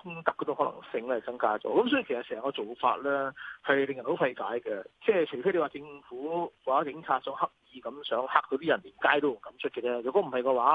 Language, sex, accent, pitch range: Chinese, male, native, 125-160 Hz